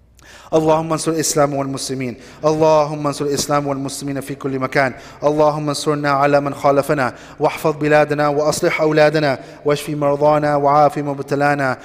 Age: 30-49